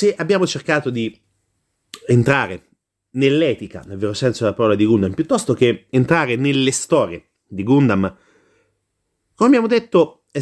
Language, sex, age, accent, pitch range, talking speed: Italian, male, 30-49, native, 110-170 Hz, 140 wpm